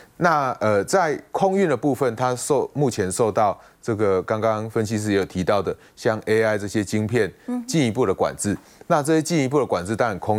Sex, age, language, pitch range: male, 30-49, Chinese, 95-130 Hz